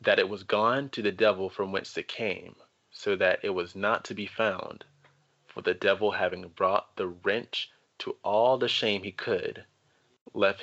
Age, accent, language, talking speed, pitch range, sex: 30-49, American, English, 185 wpm, 100-150 Hz, male